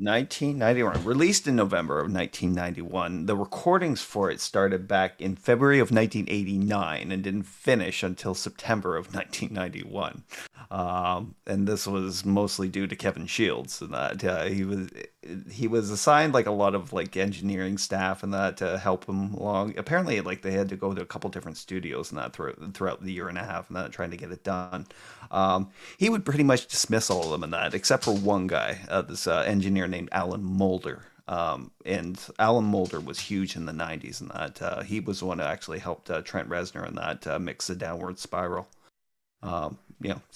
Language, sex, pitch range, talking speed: English, male, 95-110 Hz, 195 wpm